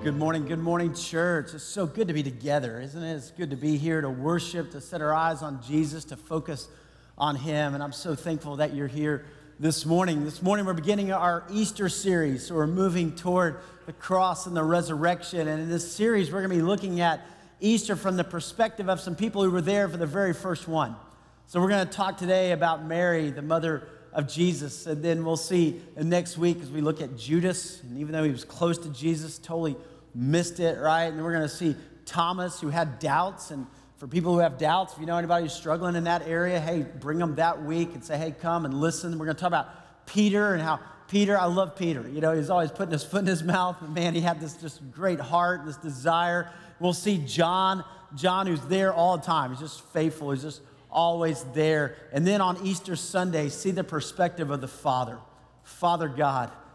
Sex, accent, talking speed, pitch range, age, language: male, American, 220 wpm, 150-175 Hz, 40-59, English